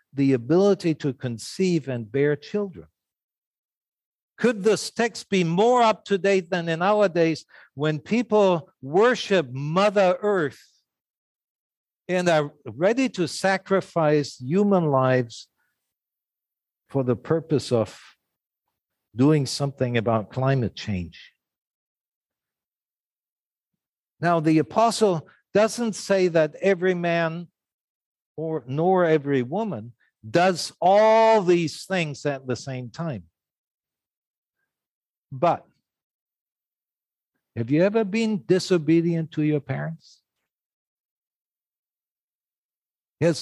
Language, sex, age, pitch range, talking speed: English, male, 60-79, 130-185 Hz, 95 wpm